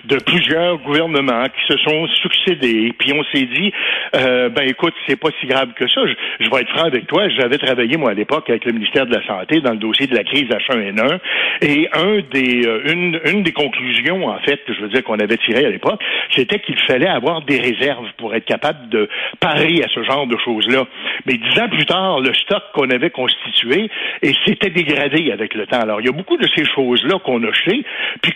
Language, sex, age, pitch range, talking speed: French, male, 60-79, 130-165 Hz, 230 wpm